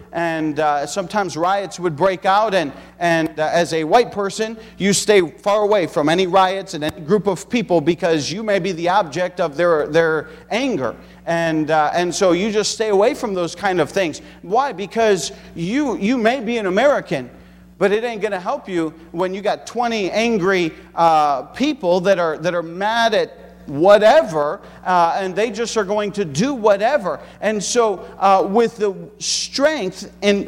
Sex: male